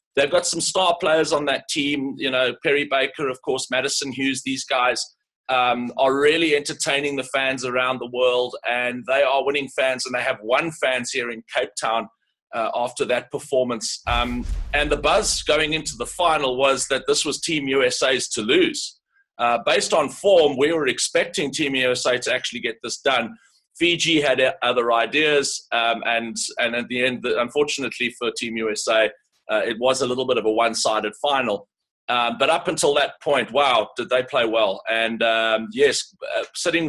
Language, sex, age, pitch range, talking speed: English, male, 30-49, 125-155 Hz, 185 wpm